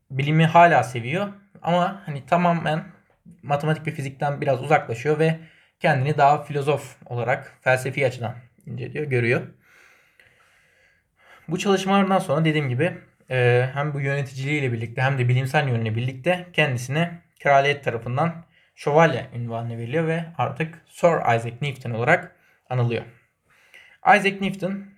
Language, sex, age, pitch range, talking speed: Turkish, male, 20-39, 125-165 Hz, 120 wpm